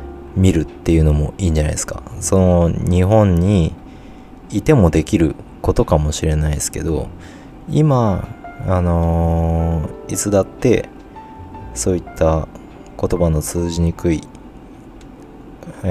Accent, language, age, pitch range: native, Japanese, 20-39, 80-95 Hz